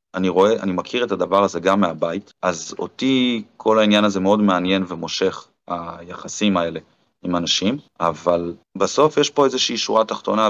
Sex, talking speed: male, 160 wpm